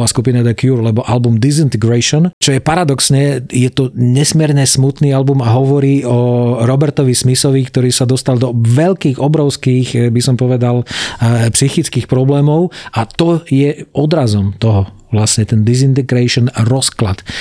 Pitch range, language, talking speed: 115-135 Hz, Slovak, 140 wpm